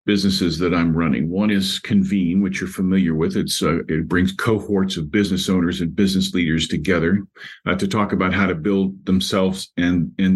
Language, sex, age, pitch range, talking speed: English, male, 50-69, 95-125 Hz, 190 wpm